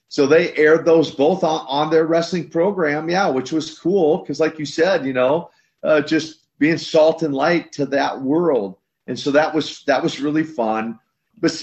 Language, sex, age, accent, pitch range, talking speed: English, male, 40-59, American, 130-165 Hz, 195 wpm